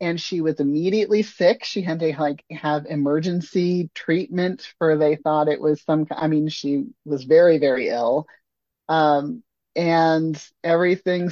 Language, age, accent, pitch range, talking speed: English, 30-49, American, 150-185 Hz, 150 wpm